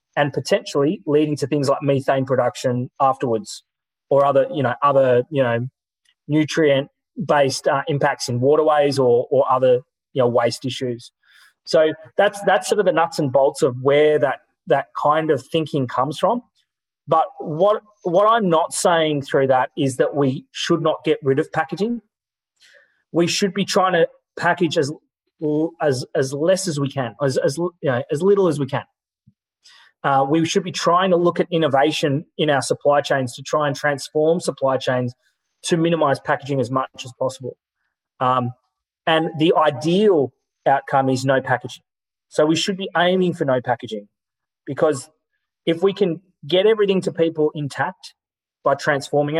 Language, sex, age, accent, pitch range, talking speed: English, male, 30-49, Australian, 135-170 Hz, 170 wpm